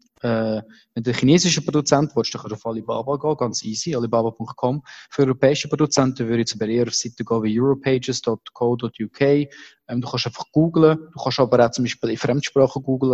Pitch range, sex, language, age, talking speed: 120-145 Hz, male, German, 20-39, 185 wpm